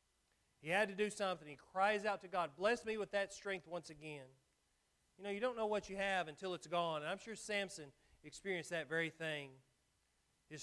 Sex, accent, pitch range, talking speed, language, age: male, American, 170-210 Hz, 210 wpm, English, 40-59